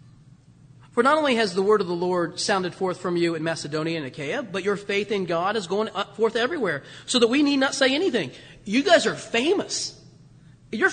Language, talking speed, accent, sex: English, 210 wpm, American, male